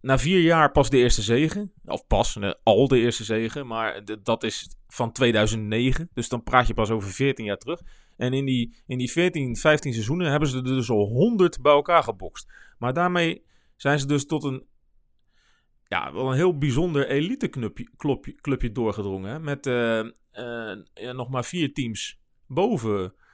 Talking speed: 175 wpm